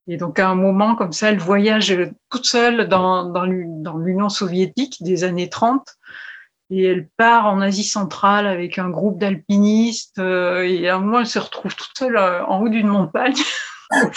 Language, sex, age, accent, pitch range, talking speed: French, female, 50-69, French, 180-210 Hz, 180 wpm